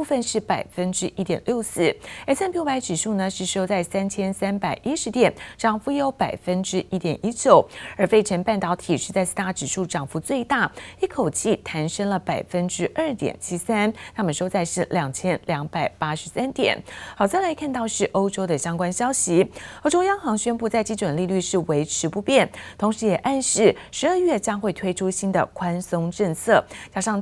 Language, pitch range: Chinese, 170-230 Hz